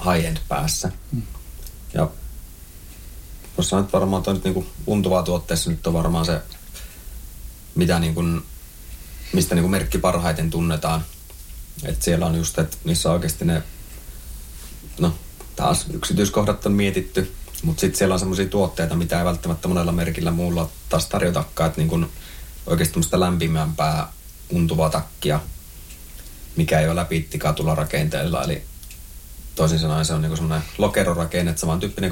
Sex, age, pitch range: male, 30-49, 80-90 Hz